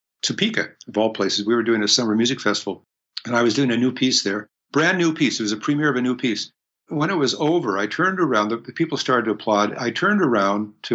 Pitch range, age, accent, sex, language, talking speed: 110-150 Hz, 60-79, American, male, English, 260 wpm